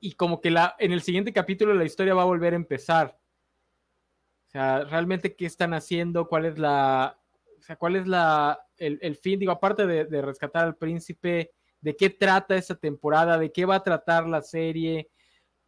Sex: male